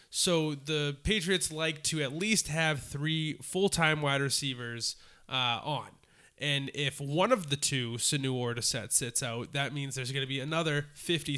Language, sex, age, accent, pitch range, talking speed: English, male, 20-39, American, 130-160 Hz, 175 wpm